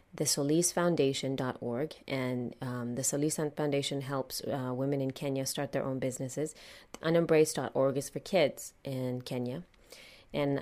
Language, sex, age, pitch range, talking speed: English, female, 30-49, 135-170 Hz, 130 wpm